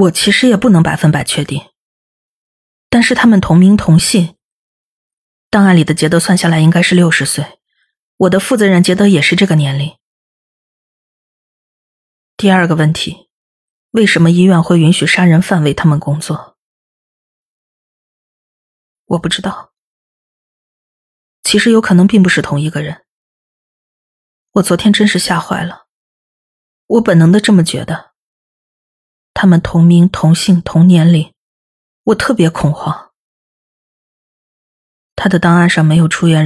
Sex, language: female, Chinese